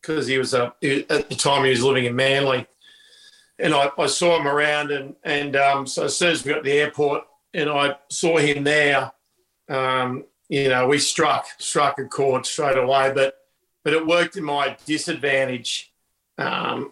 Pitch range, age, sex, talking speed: 135-155 Hz, 50-69, male, 190 wpm